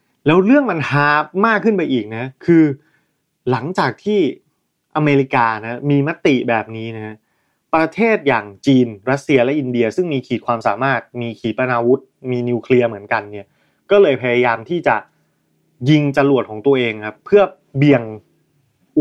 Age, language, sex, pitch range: 20-39, Thai, male, 120-160 Hz